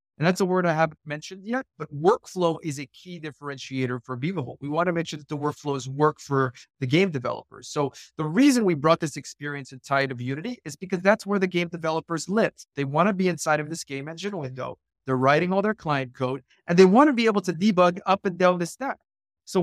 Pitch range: 145-185 Hz